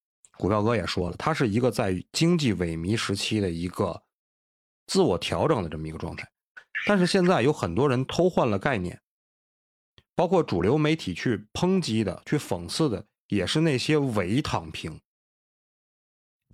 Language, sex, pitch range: Chinese, male, 90-125 Hz